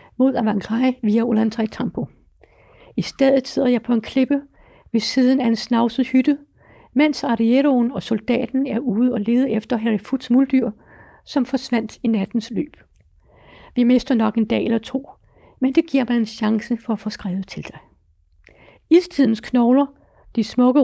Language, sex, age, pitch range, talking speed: Danish, female, 60-79, 225-260 Hz, 165 wpm